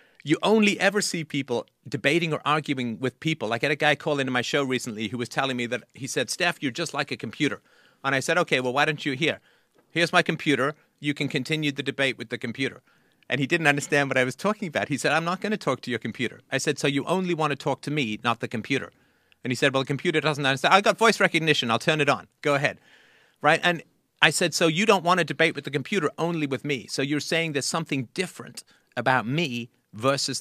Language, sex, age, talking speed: English, male, 40-59, 255 wpm